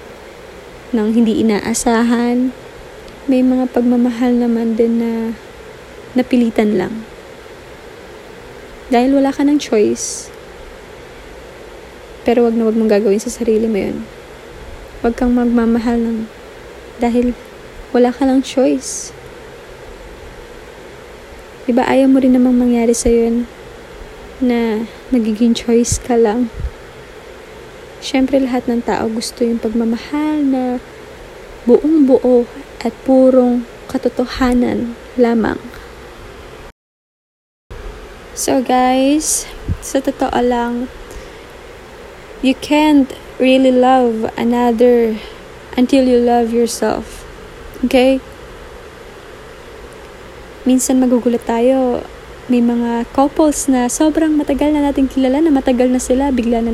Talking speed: 100 wpm